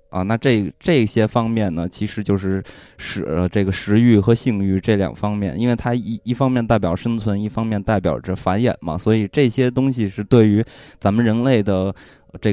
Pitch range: 95-120 Hz